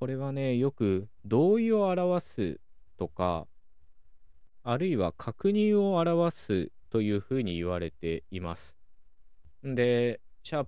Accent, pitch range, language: native, 85-120 Hz, Japanese